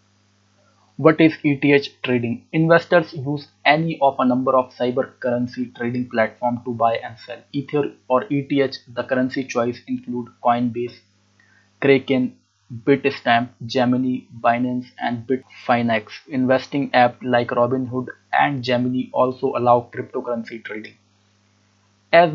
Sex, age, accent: male, 20-39, Indian